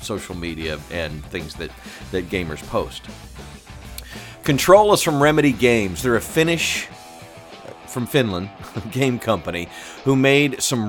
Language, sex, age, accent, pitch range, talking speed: English, male, 40-59, American, 100-135 Hz, 130 wpm